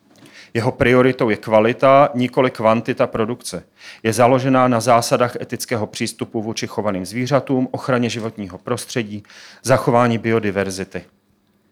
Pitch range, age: 100-120 Hz, 40-59